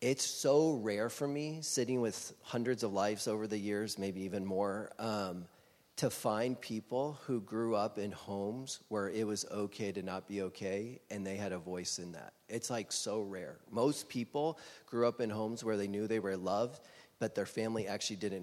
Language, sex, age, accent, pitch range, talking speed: English, male, 30-49, American, 100-125 Hz, 200 wpm